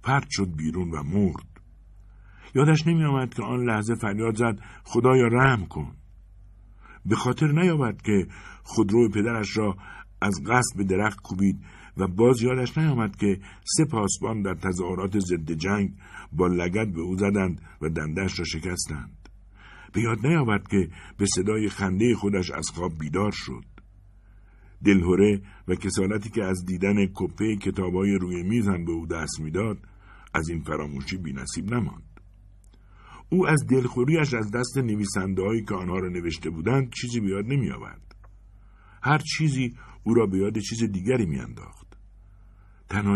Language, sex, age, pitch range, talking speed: Persian, male, 60-79, 85-105 Hz, 145 wpm